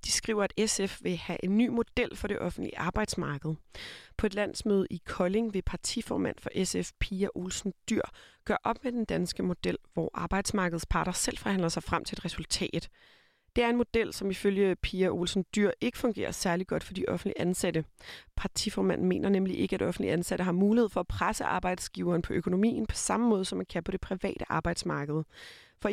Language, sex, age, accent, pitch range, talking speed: Danish, female, 30-49, native, 180-215 Hz, 195 wpm